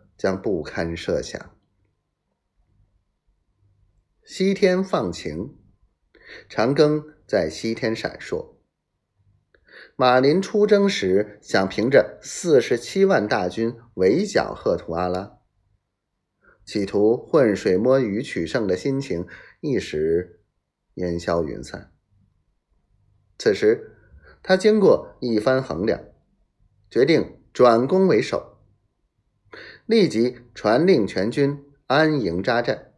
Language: Chinese